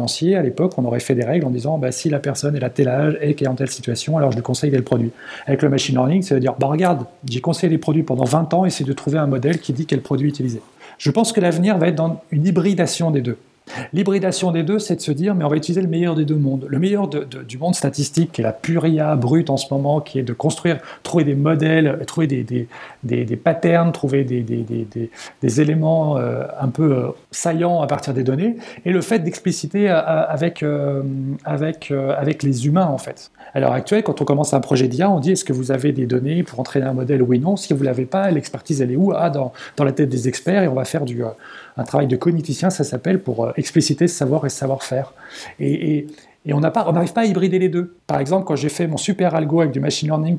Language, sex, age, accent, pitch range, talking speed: French, male, 40-59, French, 135-170 Hz, 265 wpm